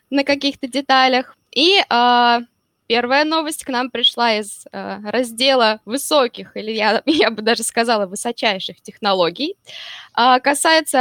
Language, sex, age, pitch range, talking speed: Russian, female, 10-29, 225-290 Hz, 130 wpm